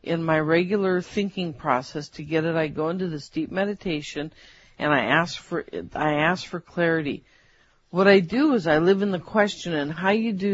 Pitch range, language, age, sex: 160-205 Hz, English, 50-69, female